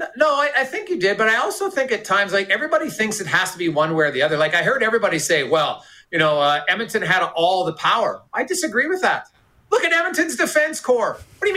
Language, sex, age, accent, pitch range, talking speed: English, male, 40-59, American, 170-260 Hz, 260 wpm